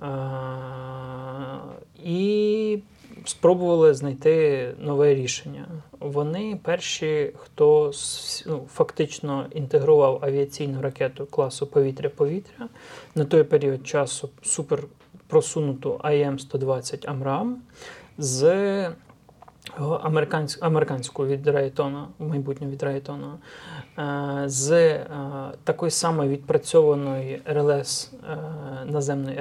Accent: native